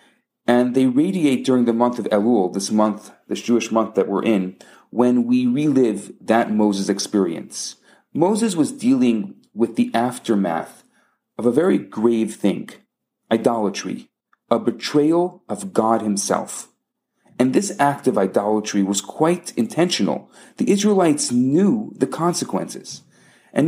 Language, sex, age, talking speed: English, male, 40-59, 135 wpm